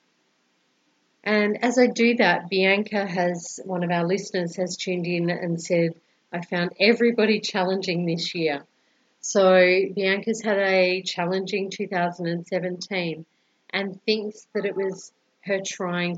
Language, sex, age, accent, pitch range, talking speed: English, female, 40-59, Australian, 170-195 Hz, 130 wpm